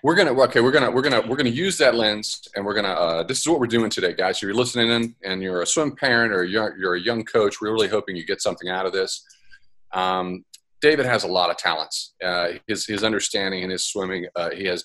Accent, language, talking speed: American, English, 260 wpm